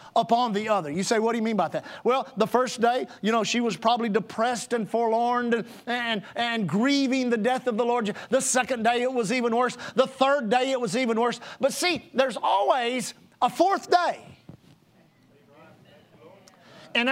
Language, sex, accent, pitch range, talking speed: English, male, American, 205-265 Hz, 190 wpm